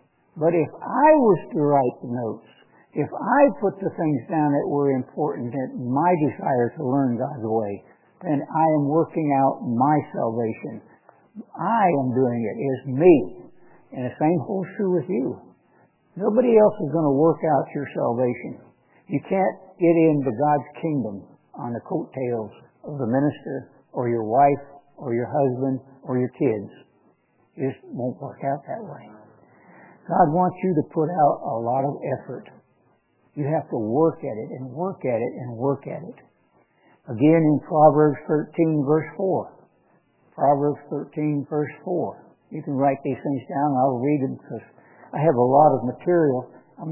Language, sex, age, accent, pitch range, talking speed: English, male, 60-79, American, 130-165 Hz, 170 wpm